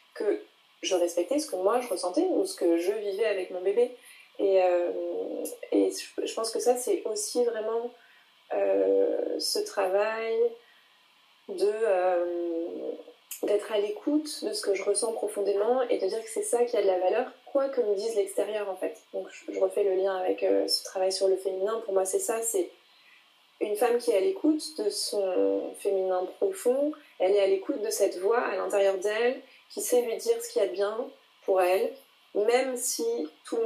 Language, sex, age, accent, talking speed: French, female, 20-39, French, 200 wpm